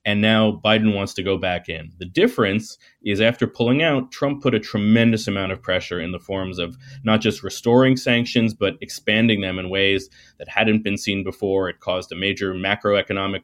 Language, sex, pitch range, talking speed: English, male, 95-120 Hz, 195 wpm